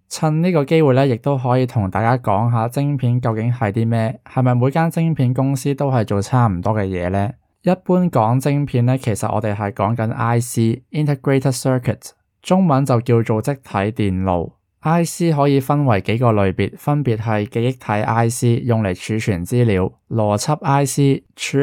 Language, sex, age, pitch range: Chinese, male, 20-39, 105-135 Hz